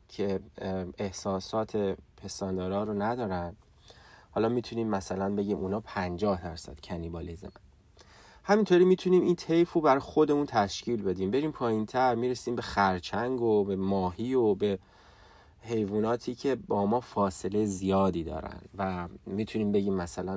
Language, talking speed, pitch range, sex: Persian, 125 wpm, 95-120 Hz, male